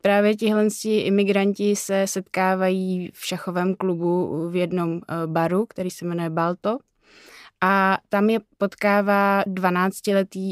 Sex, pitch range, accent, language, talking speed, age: female, 185-200 Hz, native, Czech, 120 wpm, 20-39